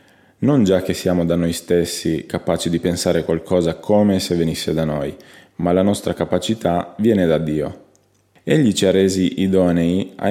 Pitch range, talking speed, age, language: 85-105 Hz, 170 wpm, 20-39, Italian